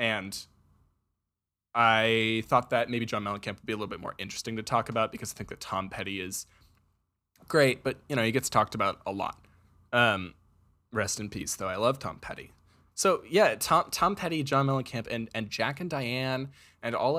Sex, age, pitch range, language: male, 20-39, 105-135 Hz, English